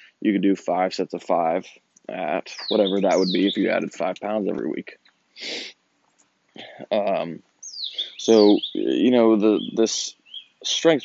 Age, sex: 20-39, male